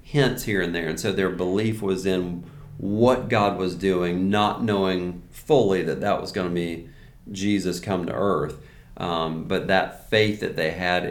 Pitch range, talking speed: 85-105 Hz, 180 wpm